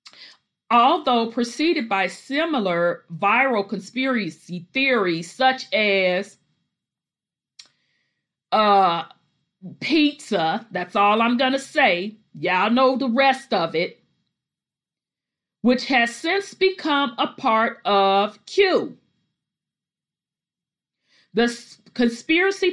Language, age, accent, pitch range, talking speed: English, 40-59, American, 195-265 Hz, 85 wpm